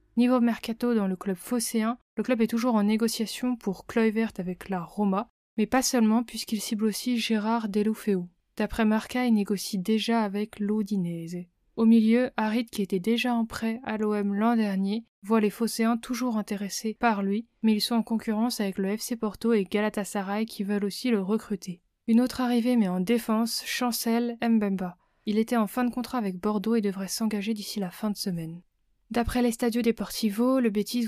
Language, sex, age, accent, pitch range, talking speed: French, female, 20-39, French, 200-230 Hz, 185 wpm